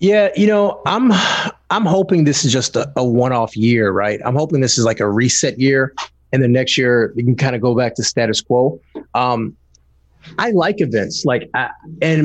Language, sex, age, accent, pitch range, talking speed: English, male, 30-49, American, 115-155 Hz, 200 wpm